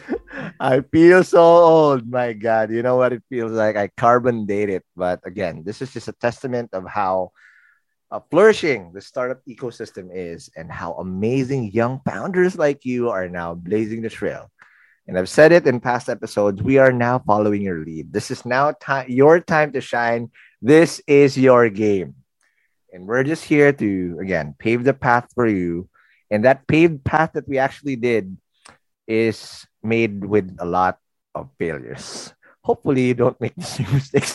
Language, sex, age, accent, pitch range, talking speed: English, male, 20-39, Filipino, 105-145 Hz, 175 wpm